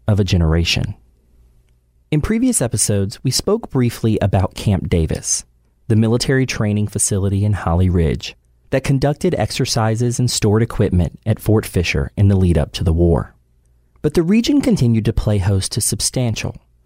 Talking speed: 155 wpm